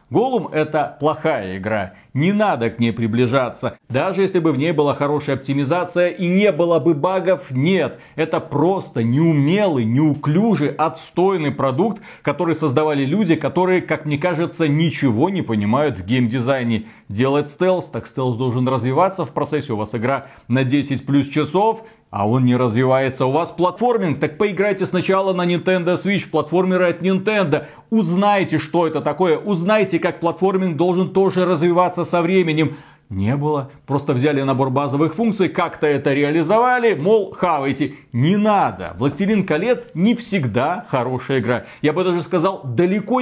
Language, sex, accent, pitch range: Russian, male, native, 135-180 Hz